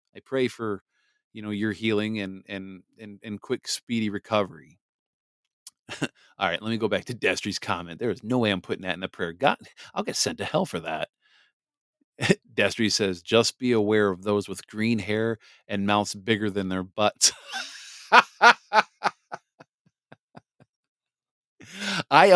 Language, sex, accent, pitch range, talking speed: English, male, American, 105-130 Hz, 155 wpm